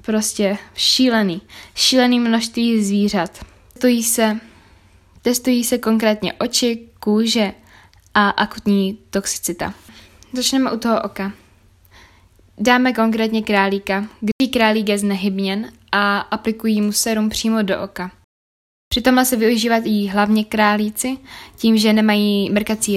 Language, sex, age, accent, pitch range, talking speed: Czech, female, 10-29, native, 195-225 Hz, 110 wpm